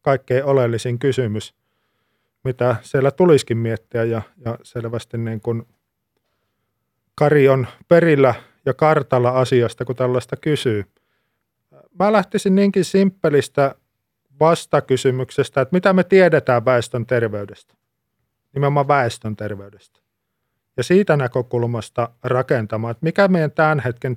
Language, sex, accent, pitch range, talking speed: Finnish, male, native, 120-140 Hz, 105 wpm